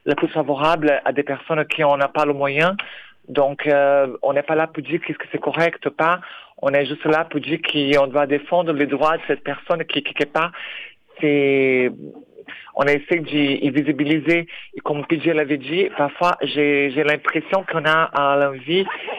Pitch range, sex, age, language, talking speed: 140-160 Hz, male, 50-69, French, 190 wpm